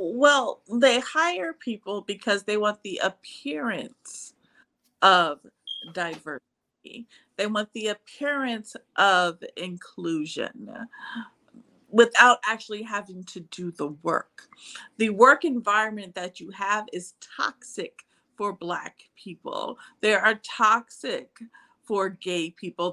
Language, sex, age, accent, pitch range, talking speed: English, female, 50-69, American, 185-245 Hz, 105 wpm